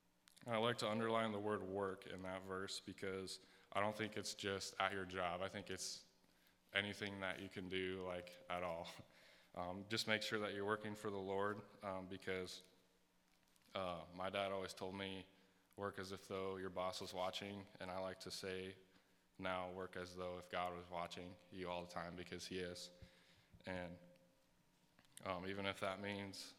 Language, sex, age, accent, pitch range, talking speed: English, male, 10-29, American, 90-100 Hz, 185 wpm